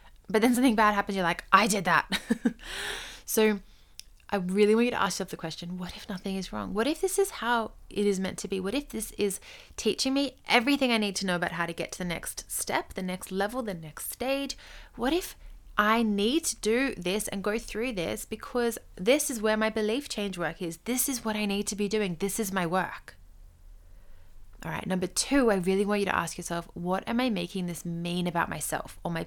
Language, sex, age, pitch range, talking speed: English, female, 20-39, 175-230 Hz, 230 wpm